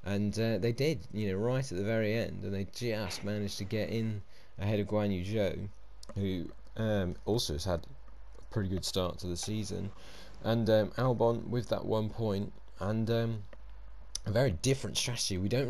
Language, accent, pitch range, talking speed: English, British, 90-110 Hz, 185 wpm